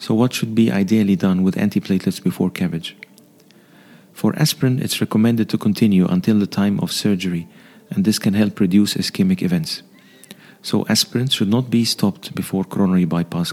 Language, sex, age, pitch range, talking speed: English, male, 40-59, 105-130 Hz, 165 wpm